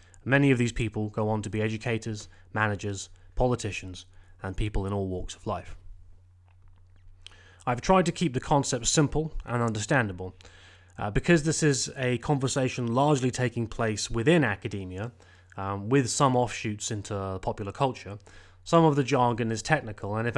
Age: 20-39